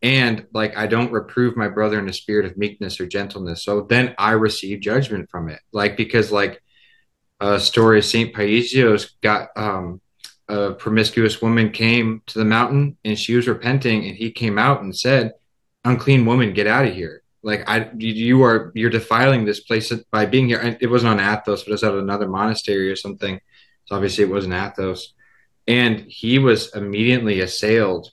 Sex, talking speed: male, 190 wpm